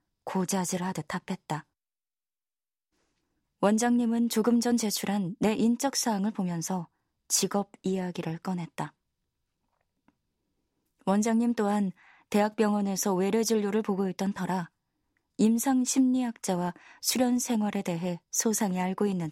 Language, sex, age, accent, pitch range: Korean, female, 20-39, native, 180-225 Hz